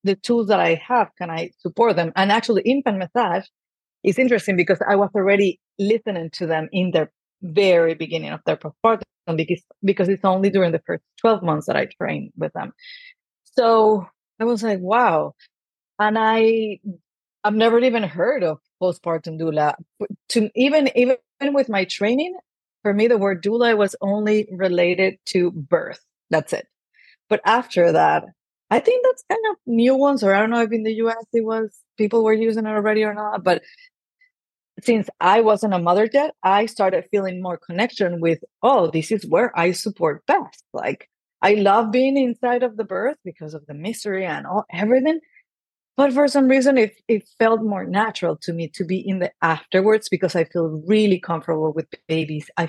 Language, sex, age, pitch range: English, female, 30-49, 180-230 Hz